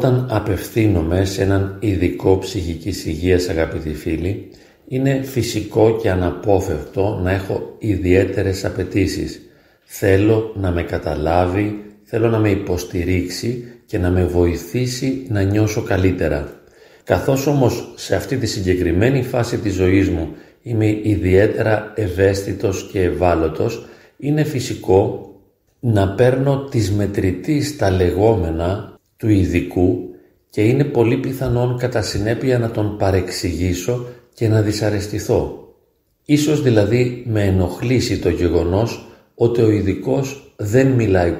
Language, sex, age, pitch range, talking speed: Greek, male, 40-59, 95-120 Hz, 115 wpm